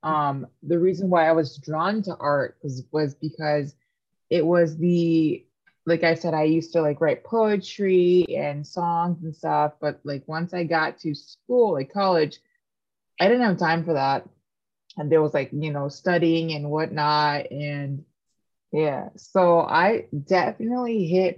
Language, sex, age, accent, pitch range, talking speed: English, female, 20-39, American, 145-175 Hz, 165 wpm